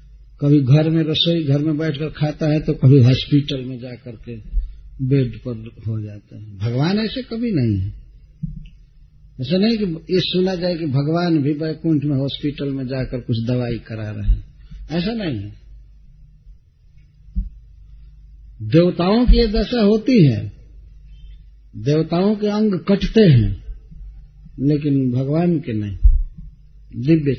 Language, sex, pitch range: Hindi, male, 120-165 Hz